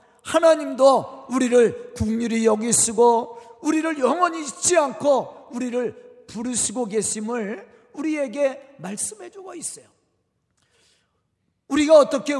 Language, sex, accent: Korean, male, native